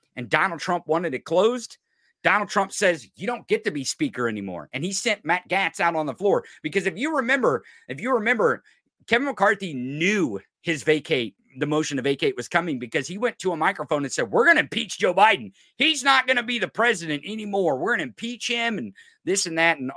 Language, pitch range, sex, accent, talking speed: English, 135-195 Hz, male, American, 225 wpm